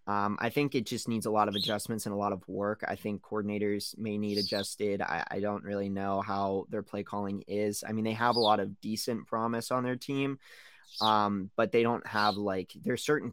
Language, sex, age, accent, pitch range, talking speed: English, male, 20-39, American, 100-115 Hz, 230 wpm